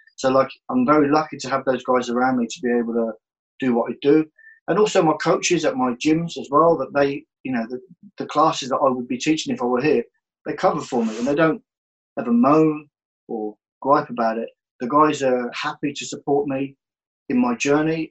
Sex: male